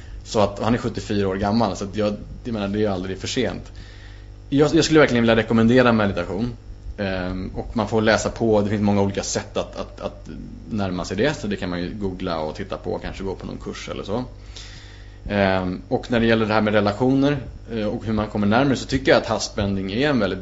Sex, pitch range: male, 100-115 Hz